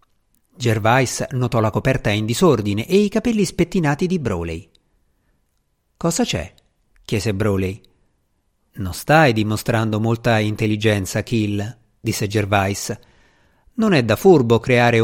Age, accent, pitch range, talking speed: 50-69, native, 100-150 Hz, 115 wpm